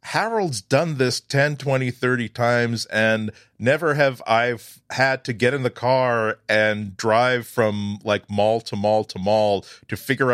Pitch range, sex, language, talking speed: 105-135 Hz, male, English, 165 wpm